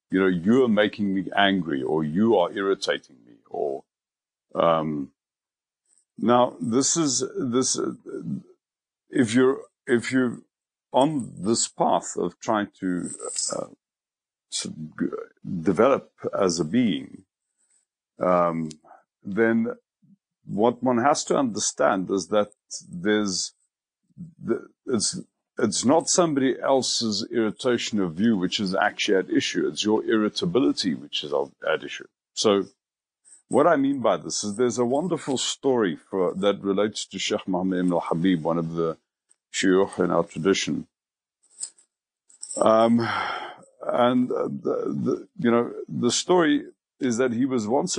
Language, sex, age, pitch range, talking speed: English, male, 60-79, 95-130 Hz, 135 wpm